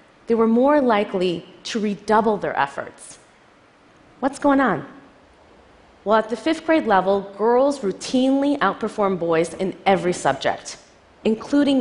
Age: 30-49